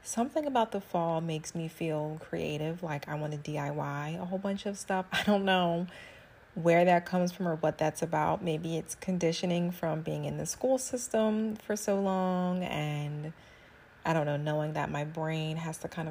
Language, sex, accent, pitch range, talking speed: English, female, American, 150-170 Hz, 195 wpm